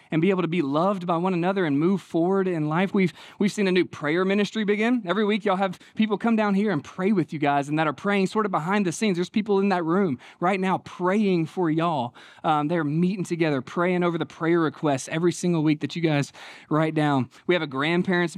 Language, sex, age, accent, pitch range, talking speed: English, male, 20-39, American, 170-215 Hz, 245 wpm